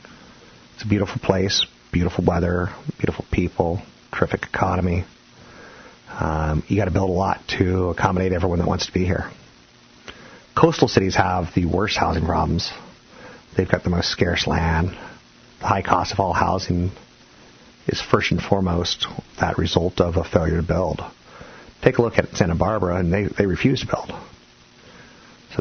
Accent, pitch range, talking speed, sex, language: American, 85-95 Hz, 160 wpm, male, English